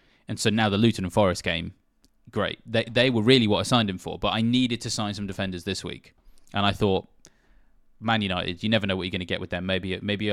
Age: 20-39